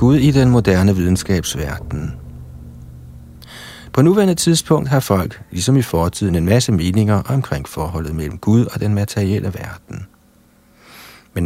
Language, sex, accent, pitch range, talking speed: Danish, male, native, 90-120 Hz, 130 wpm